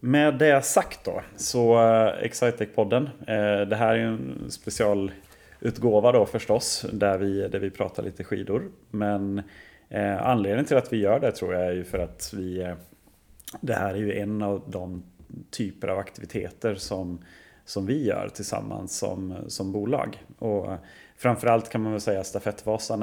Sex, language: male, Swedish